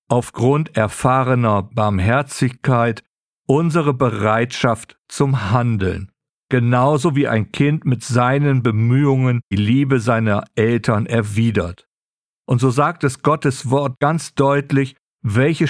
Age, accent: 50-69, German